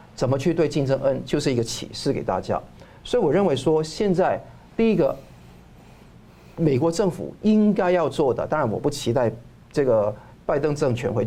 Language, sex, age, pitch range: Chinese, male, 50-69, 130-180 Hz